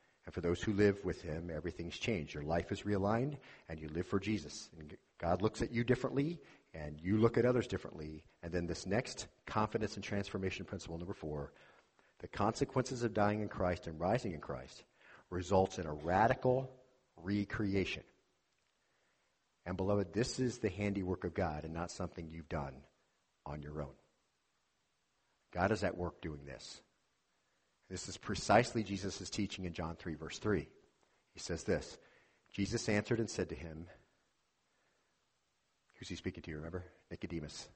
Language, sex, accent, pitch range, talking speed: English, male, American, 85-105 Hz, 160 wpm